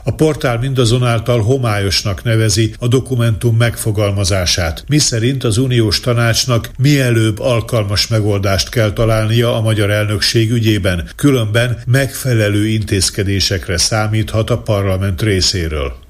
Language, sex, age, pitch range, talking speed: Hungarian, male, 60-79, 105-125 Hz, 105 wpm